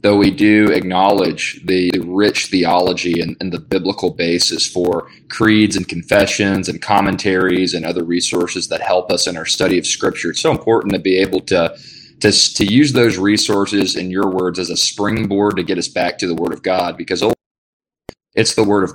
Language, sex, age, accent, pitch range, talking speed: English, male, 20-39, American, 85-100 Hz, 195 wpm